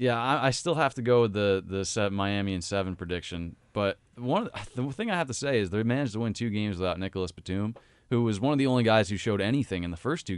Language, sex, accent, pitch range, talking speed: English, male, American, 95-125 Hz, 285 wpm